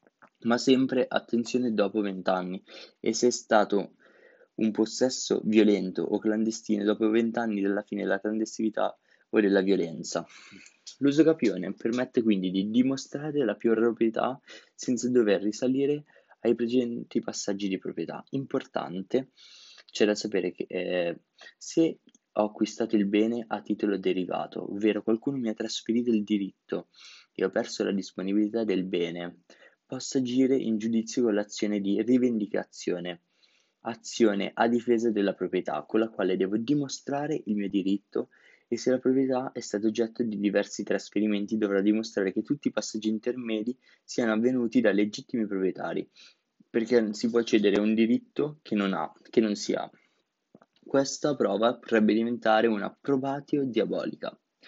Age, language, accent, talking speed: 20-39, Italian, native, 145 wpm